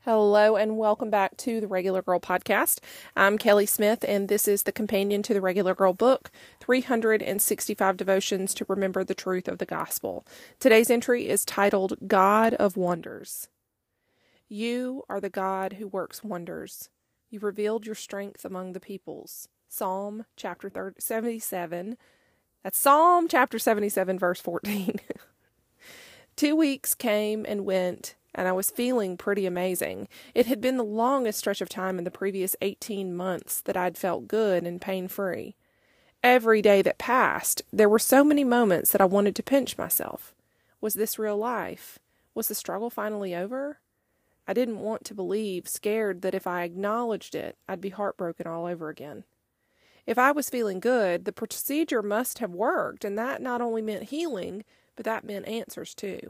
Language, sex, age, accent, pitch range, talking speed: English, female, 30-49, American, 190-230 Hz, 165 wpm